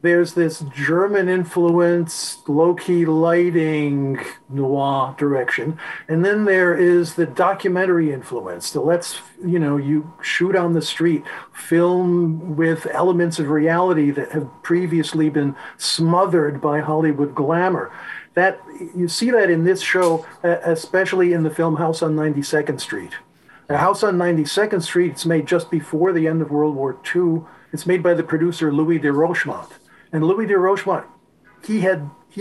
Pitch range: 155-185 Hz